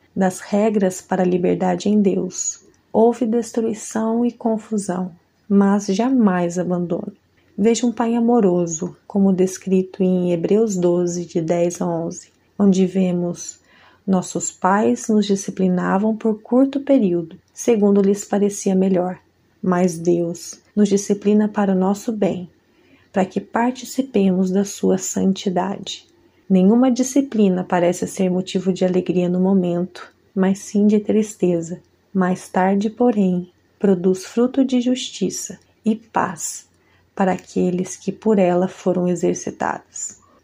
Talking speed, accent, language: 125 wpm, Brazilian, Portuguese